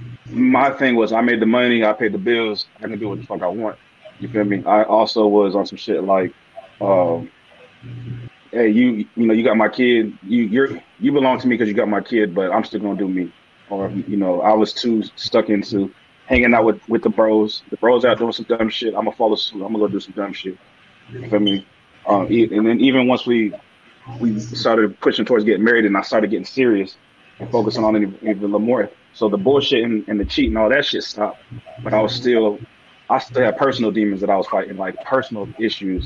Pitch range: 100-120 Hz